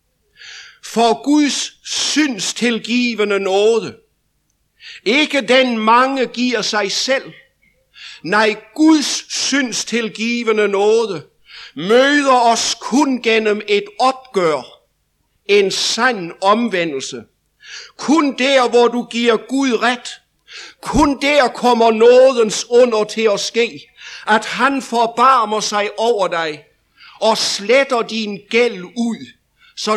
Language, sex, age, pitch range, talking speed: English, male, 60-79, 205-255 Hz, 100 wpm